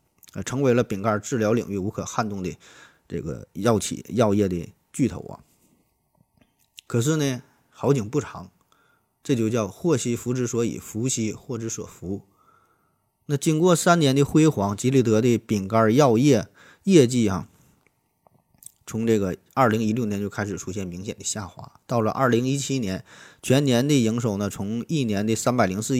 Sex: male